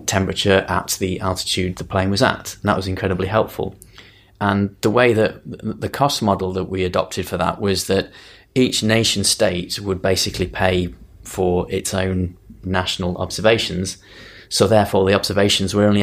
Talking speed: 165 wpm